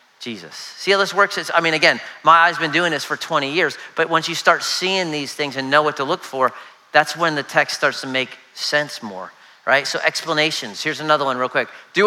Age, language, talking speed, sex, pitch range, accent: 40-59, English, 240 wpm, male, 140-185 Hz, American